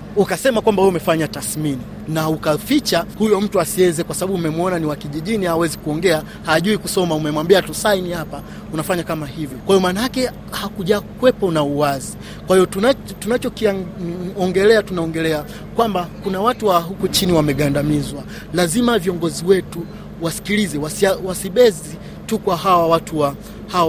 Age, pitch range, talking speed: 30-49, 160-200 Hz, 150 wpm